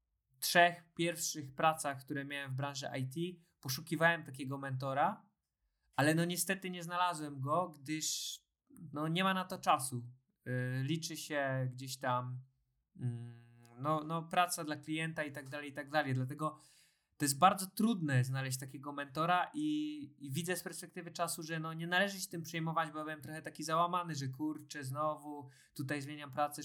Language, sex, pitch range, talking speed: Polish, male, 135-160 Hz, 160 wpm